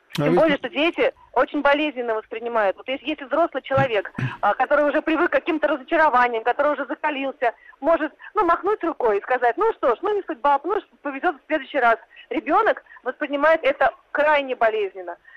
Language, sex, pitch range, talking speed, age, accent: Russian, female, 265-320 Hz, 175 wpm, 30-49, native